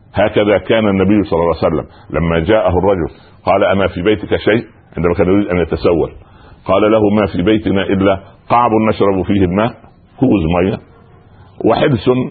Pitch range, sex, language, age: 85-105 Hz, male, Arabic, 60-79